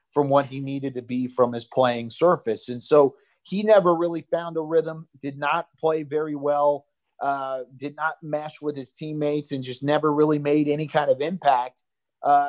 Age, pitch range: 30-49, 135-155 Hz